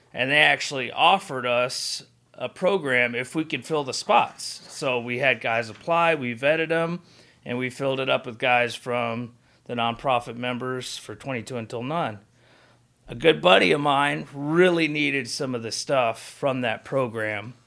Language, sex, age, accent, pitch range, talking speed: English, male, 30-49, American, 120-150 Hz, 170 wpm